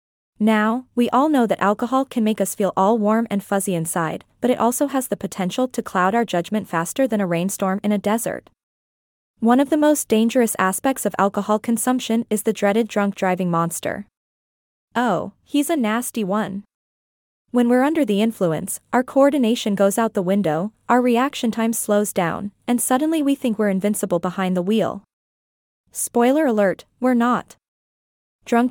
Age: 20-39